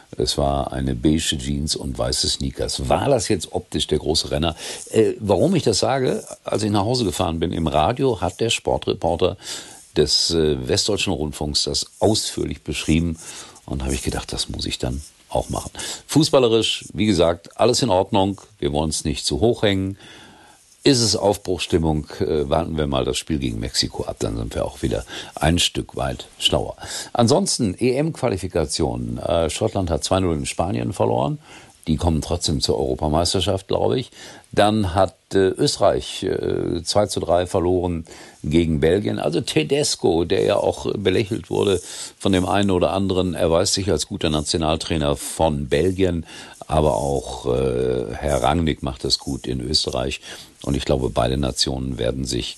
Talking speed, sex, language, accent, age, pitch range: 165 wpm, male, German, German, 50-69, 75-100 Hz